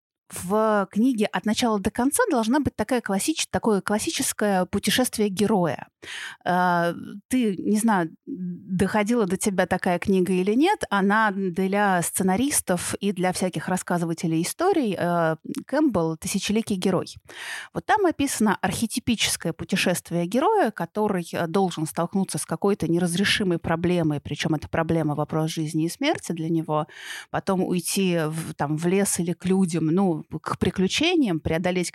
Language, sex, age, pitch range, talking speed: Russian, female, 30-49, 170-215 Hz, 130 wpm